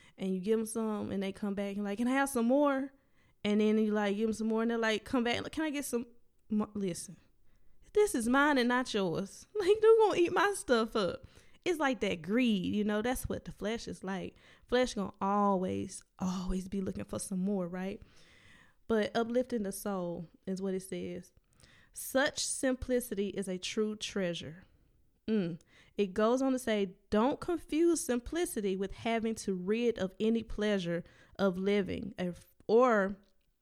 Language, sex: English, female